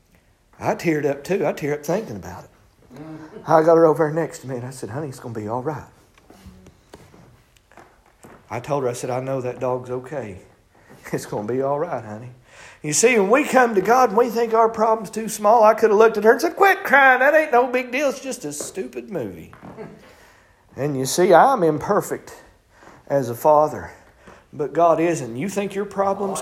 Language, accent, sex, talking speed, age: English, American, male, 215 wpm, 50-69